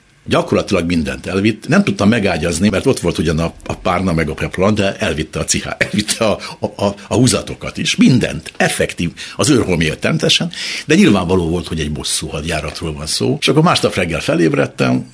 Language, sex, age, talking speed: Hungarian, male, 60-79, 180 wpm